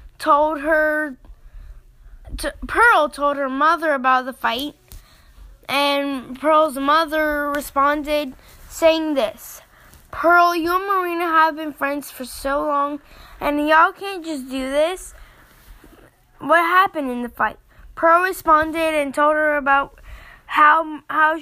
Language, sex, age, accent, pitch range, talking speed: English, female, 10-29, American, 275-315 Hz, 125 wpm